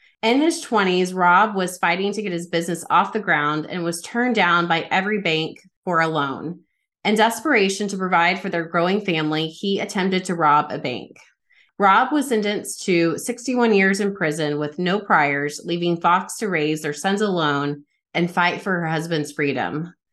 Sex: female